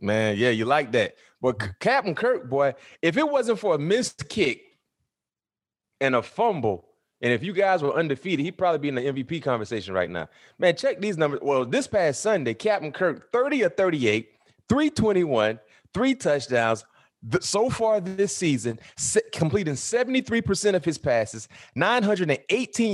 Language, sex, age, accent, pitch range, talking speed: English, male, 30-49, American, 115-190 Hz, 155 wpm